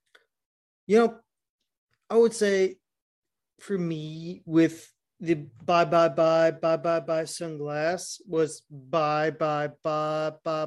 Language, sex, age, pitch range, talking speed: English, male, 30-49, 145-170 Hz, 120 wpm